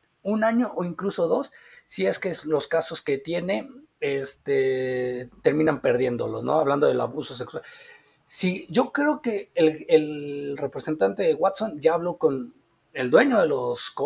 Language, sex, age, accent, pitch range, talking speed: Spanish, male, 30-49, Mexican, 145-225 Hz, 155 wpm